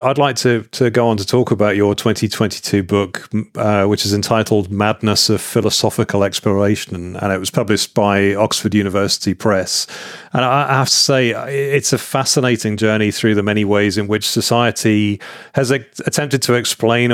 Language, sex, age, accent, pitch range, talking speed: English, male, 30-49, British, 105-125 Hz, 170 wpm